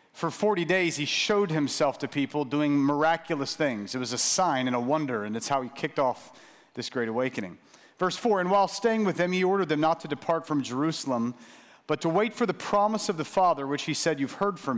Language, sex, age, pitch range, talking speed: English, male, 40-59, 145-195 Hz, 230 wpm